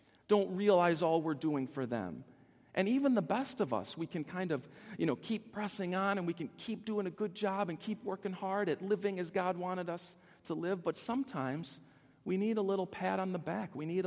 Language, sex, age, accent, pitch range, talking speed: English, male, 40-59, American, 150-215 Hz, 230 wpm